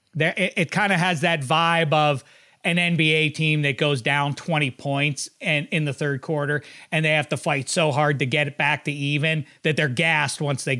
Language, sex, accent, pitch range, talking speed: English, male, American, 140-180 Hz, 205 wpm